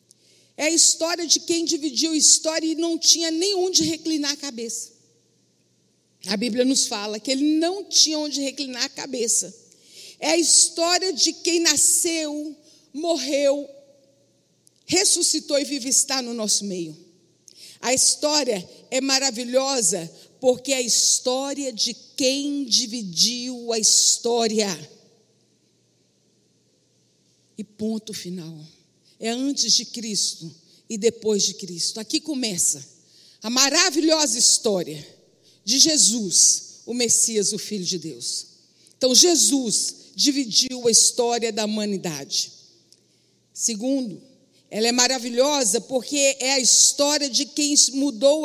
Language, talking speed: Portuguese, 120 wpm